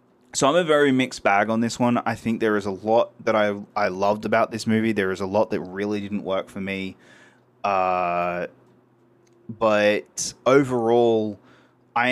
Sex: male